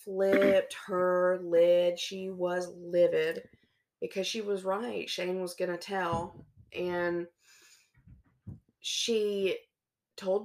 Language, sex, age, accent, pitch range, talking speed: English, female, 20-39, American, 170-190 Hz, 100 wpm